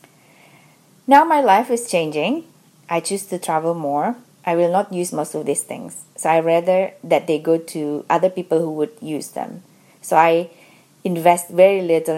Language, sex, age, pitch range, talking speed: English, female, 30-49, 165-220 Hz, 175 wpm